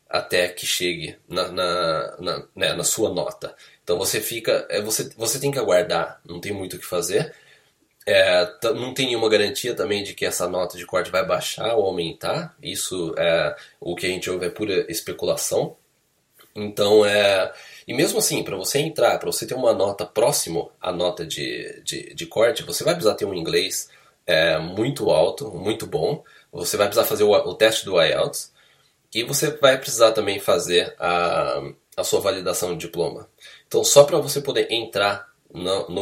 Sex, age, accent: male, 20-39, Brazilian